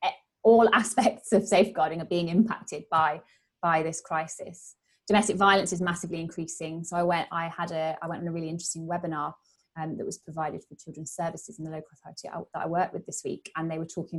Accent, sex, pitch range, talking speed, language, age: British, female, 155-180 Hz, 210 wpm, English, 20-39